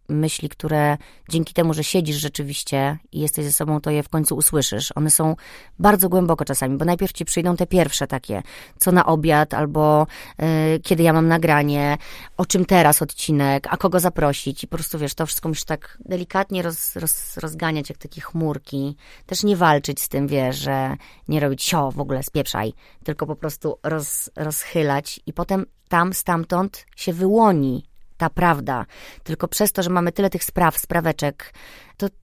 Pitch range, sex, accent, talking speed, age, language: 150-175 Hz, female, native, 175 wpm, 30-49, Polish